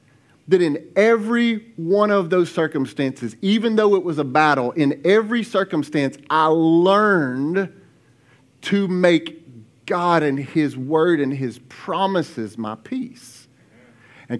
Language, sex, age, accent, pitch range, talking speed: English, male, 40-59, American, 130-190 Hz, 125 wpm